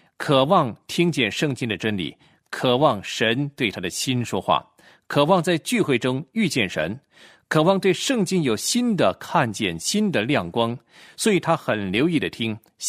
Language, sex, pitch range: Chinese, male, 115-180 Hz